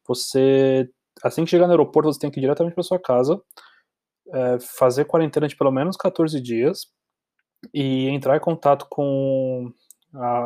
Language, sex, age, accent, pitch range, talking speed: Portuguese, male, 20-39, Brazilian, 125-150 Hz, 160 wpm